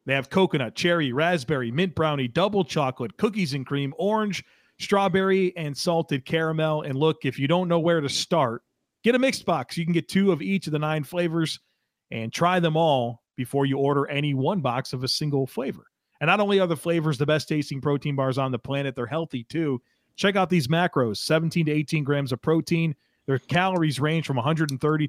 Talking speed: 205 wpm